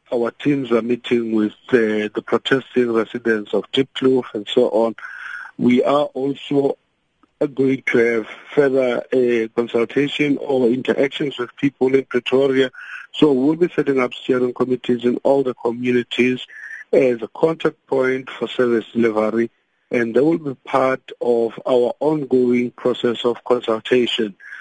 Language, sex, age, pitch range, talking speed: English, male, 50-69, 115-135 Hz, 140 wpm